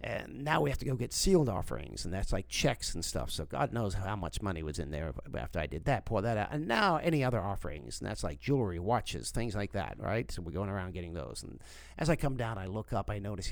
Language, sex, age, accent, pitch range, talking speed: English, male, 50-69, American, 95-135 Hz, 270 wpm